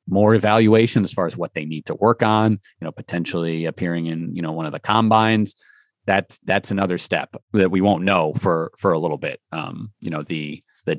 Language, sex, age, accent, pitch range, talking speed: English, male, 30-49, American, 90-115 Hz, 220 wpm